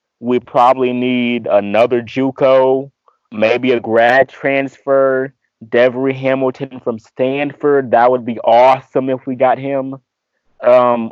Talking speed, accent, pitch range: 120 wpm, American, 120-135 Hz